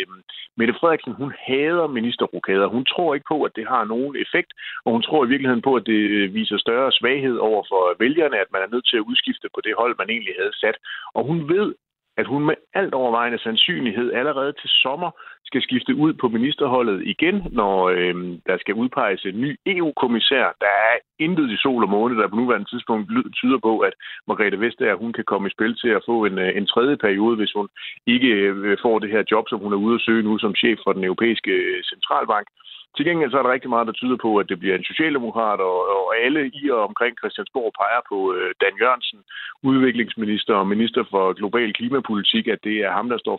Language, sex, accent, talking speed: Danish, male, native, 210 wpm